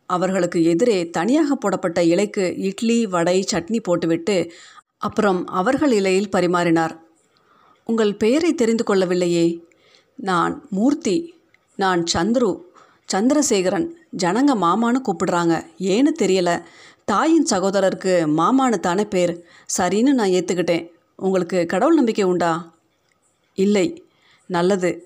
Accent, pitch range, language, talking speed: native, 175-240 Hz, Tamil, 95 wpm